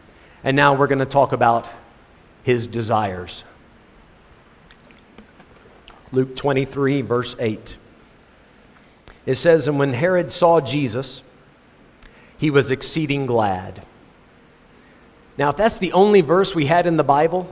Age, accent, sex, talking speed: 40-59, American, male, 120 wpm